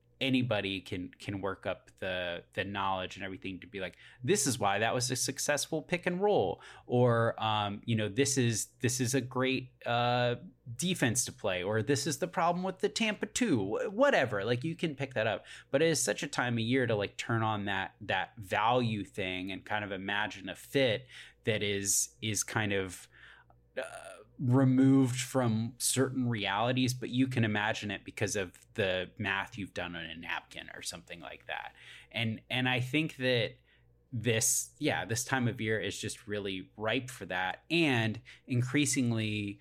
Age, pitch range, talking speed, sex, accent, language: 20-39, 100-130 Hz, 185 wpm, male, American, English